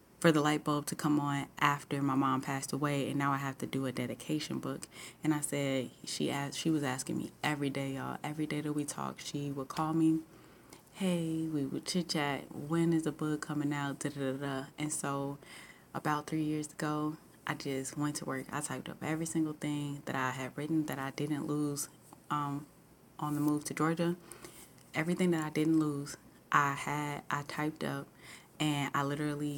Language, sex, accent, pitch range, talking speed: English, female, American, 140-160 Hz, 200 wpm